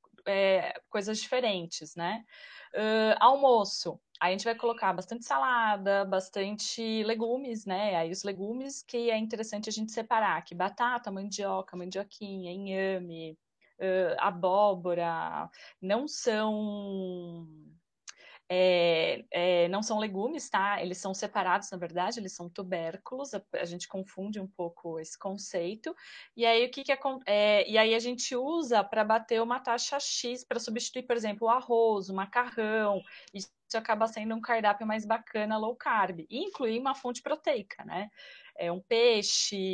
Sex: female